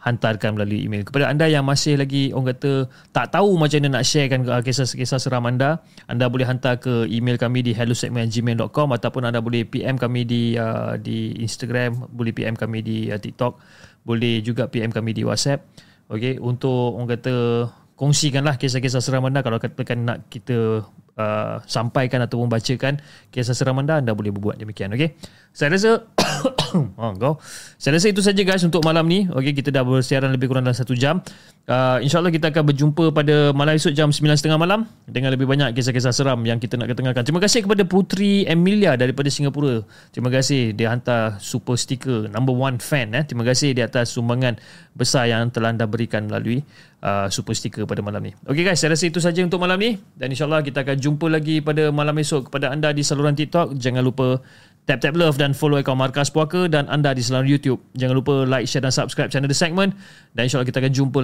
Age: 20-39